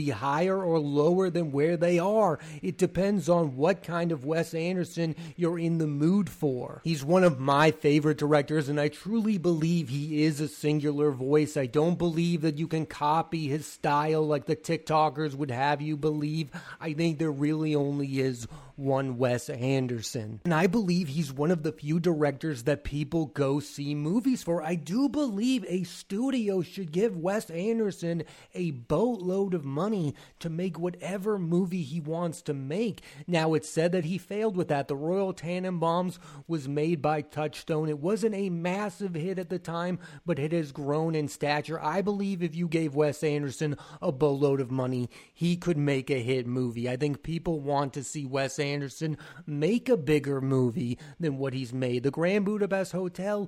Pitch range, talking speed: 150-180 Hz, 180 wpm